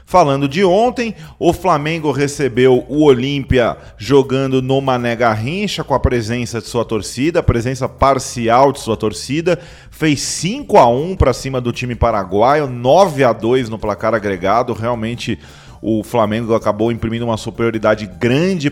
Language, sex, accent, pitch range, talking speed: Portuguese, male, Brazilian, 115-140 Hz, 140 wpm